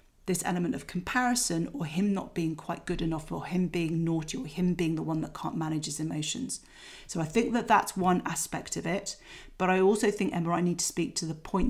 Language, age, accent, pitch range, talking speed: English, 40-59, British, 165-205 Hz, 235 wpm